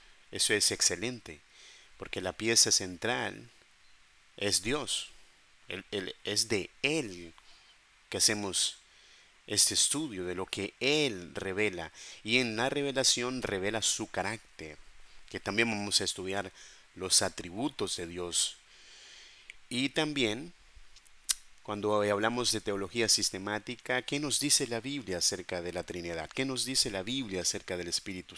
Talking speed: 130 wpm